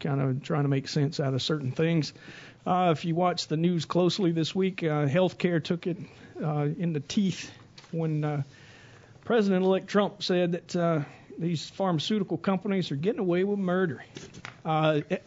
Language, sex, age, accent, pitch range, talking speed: English, male, 50-69, American, 145-185 Hz, 175 wpm